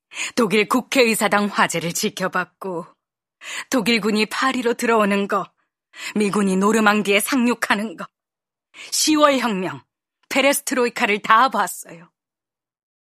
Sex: female